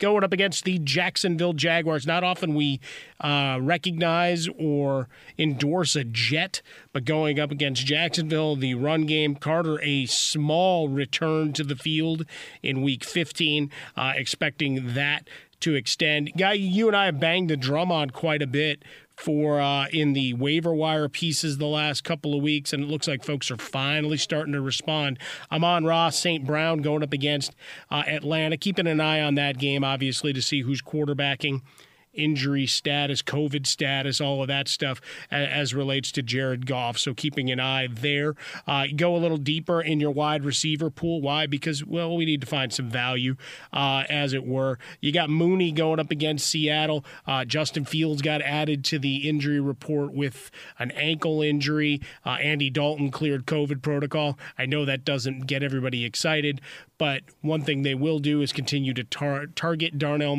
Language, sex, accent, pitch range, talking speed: English, male, American, 140-160 Hz, 180 wpm